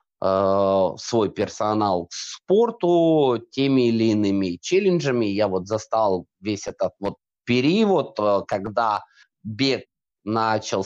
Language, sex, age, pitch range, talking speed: Russian, male, 20-39, 100-145 Hz, 100 wpm